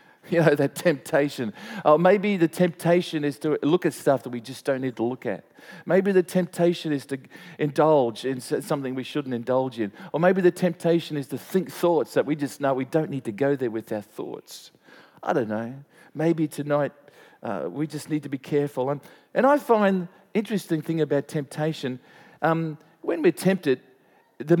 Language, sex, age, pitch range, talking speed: English, male, 40-59, 130-170 Hz, 200 wpm